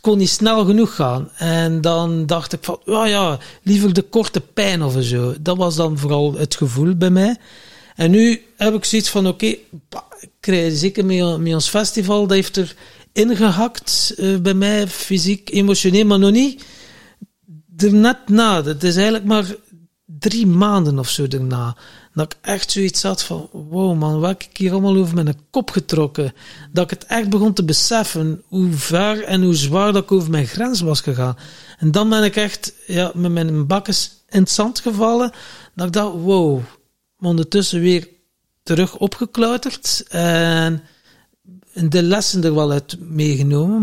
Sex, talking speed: male, 175 wpm